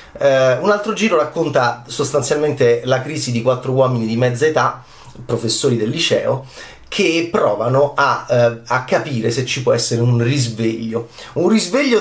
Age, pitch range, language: 30-49, 125-205 Hz, Italian